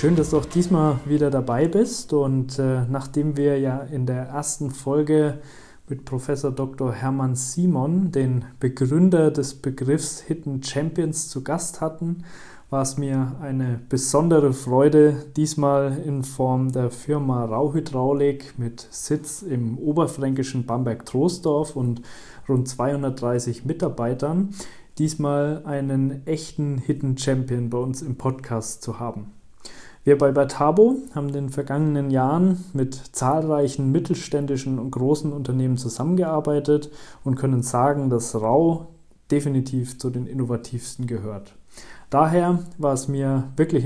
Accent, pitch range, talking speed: German, 130-150 Hz, 125 wpm